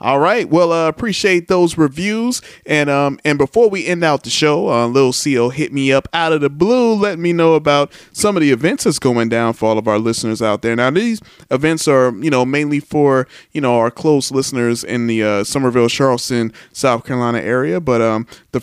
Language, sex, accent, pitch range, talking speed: English, male, American, 120-155 Hz, 220 wpm